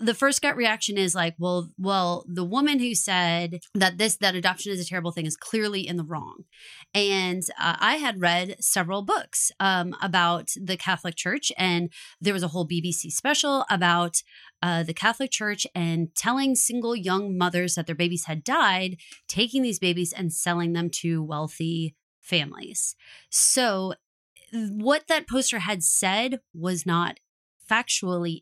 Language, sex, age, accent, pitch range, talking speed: English, female, 20-39, American, 175-235 Hz, 165 wpm